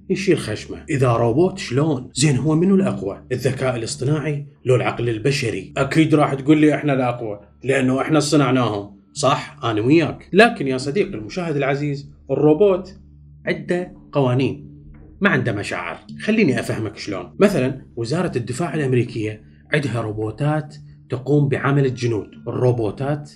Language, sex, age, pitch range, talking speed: Arabic, male, 30-49, 120-145 Hz, 130 wpm